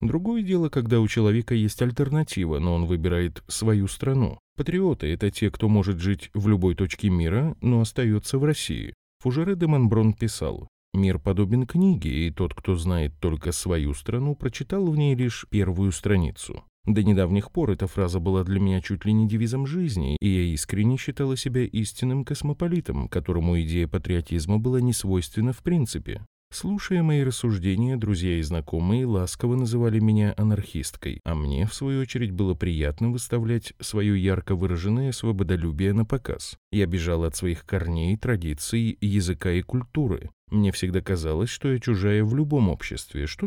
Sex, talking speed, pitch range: male, 160 wpm, 90-125 Hz